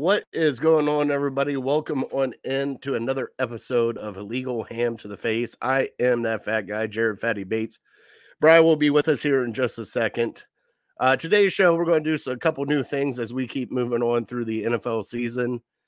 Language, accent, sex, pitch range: English, American, male, 115-140 Hz